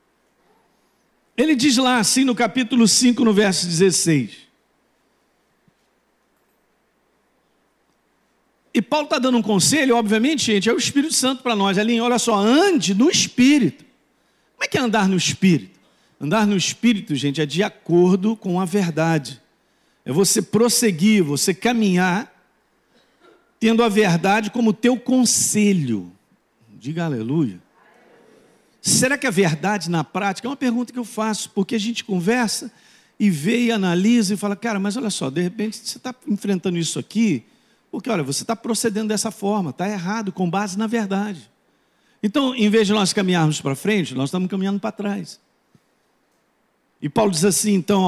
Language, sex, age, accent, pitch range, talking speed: Portuguese, male, 50-69, Brazilian, 180-230 Hz, 155 wpm